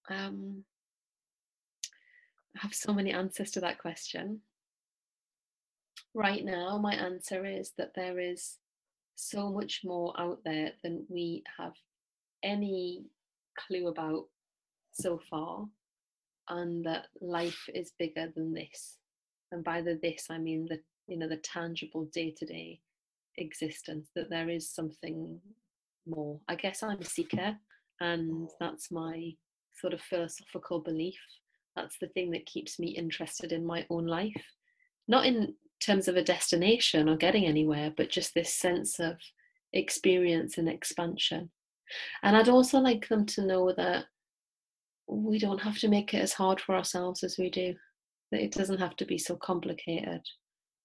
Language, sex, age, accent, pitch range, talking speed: English, female, 30-49, British, 165-195 Hz, 150 wpm